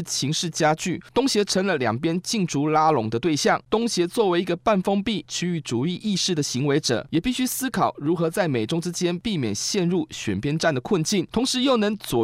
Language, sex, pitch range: Chinese, male, 150-200 Hz